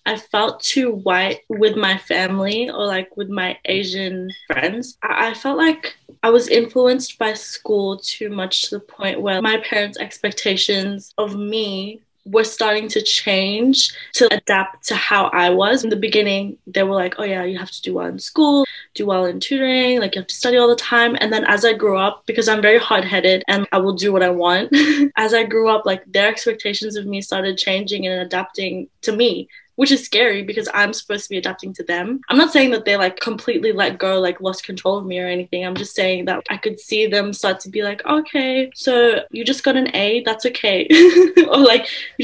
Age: 20-39